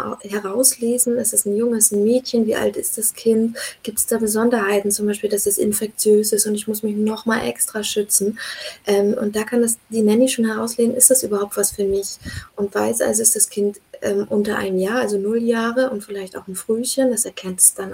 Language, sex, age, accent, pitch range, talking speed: German, female, 20-39, German, 205-235 Hz, 220 wpm